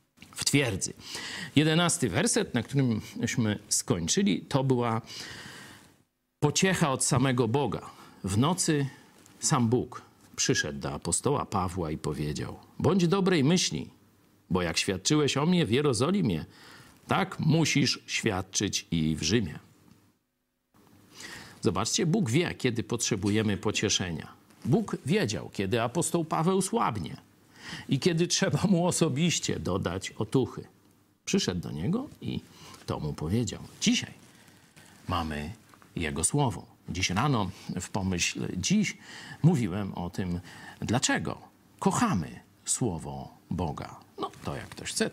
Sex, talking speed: male, 115 wpm